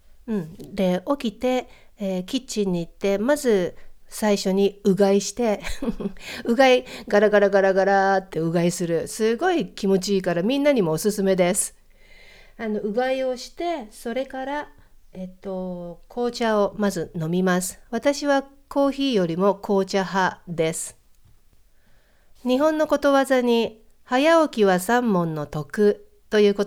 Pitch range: 190-260 Hz